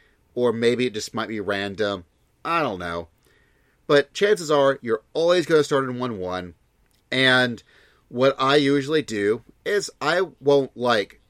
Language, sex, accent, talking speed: English, male, American, 165 wpm